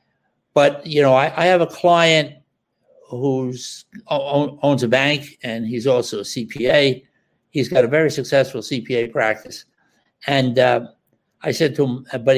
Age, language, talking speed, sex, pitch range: 60-79, English, 150 wpm, male, 125-155 Hz